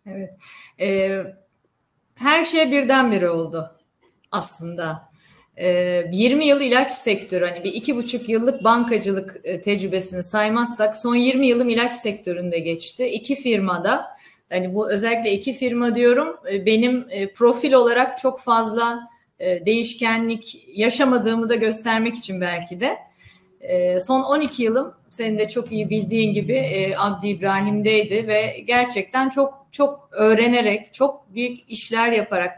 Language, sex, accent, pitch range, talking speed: Turkish, female, native, 195-250 Hz, 125 wpm